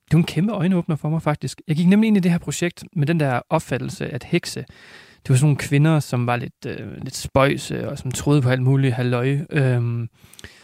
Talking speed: 225 wpm